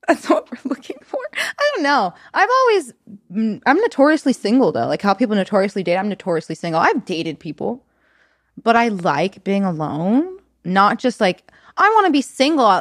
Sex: female